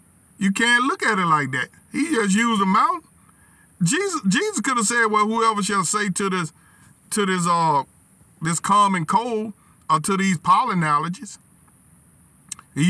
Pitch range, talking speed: 185-215 Hz, 165 wpm